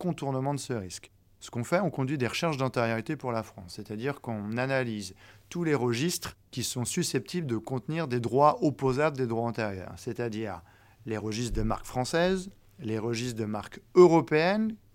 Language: French